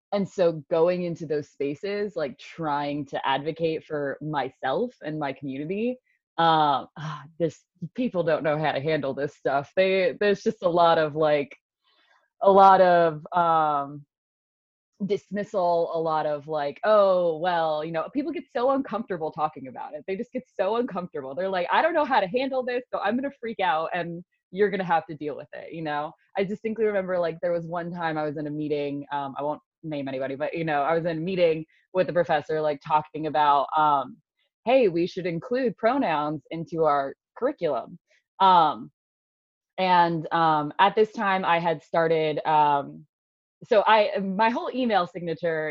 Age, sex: 20-39, female